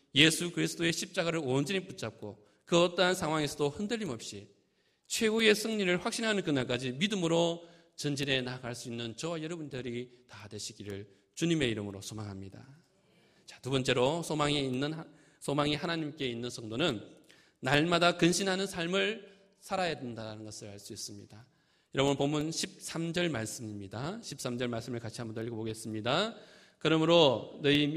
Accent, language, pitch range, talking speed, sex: Korean, English, 120-170 Hz, 120 wpm, male